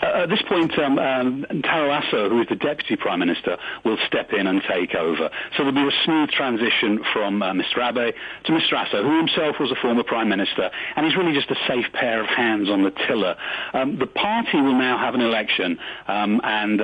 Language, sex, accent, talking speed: English, male, British, 225 wpm